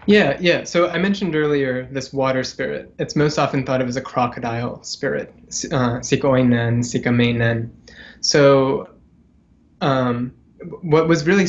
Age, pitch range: 20-39, 125-145 Hz